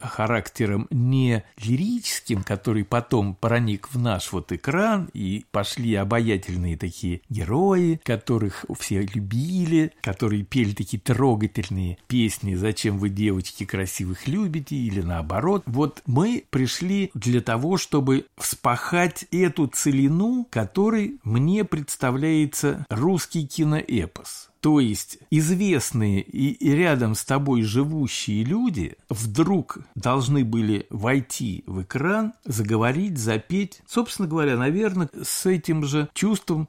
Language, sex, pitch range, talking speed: Russian, male, 110-155 Hz, 110 wpm